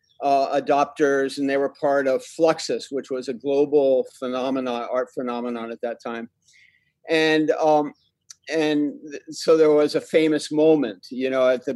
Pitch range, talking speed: 125-155 Hz, 165 wpm